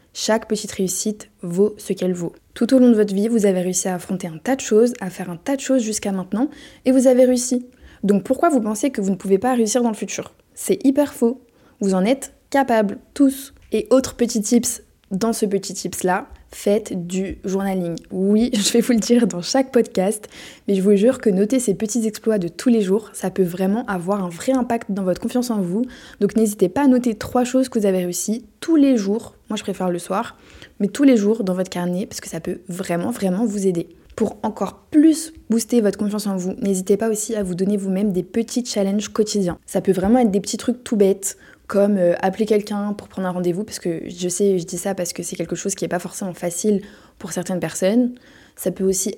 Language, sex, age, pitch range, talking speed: French, female, 20-39, 190-240 Hz, 235 wpm